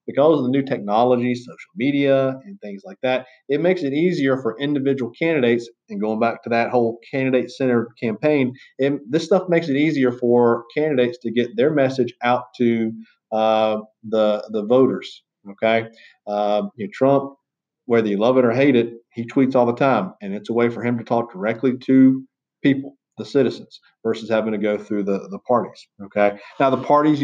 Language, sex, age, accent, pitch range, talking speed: English, male, 40-59, American, 115-145 Hz, 190 wpm